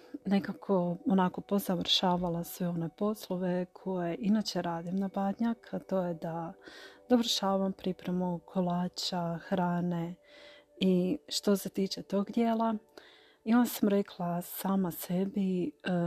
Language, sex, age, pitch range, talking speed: Croatian, female, 30-49, 175-200 Hz, 115 wpm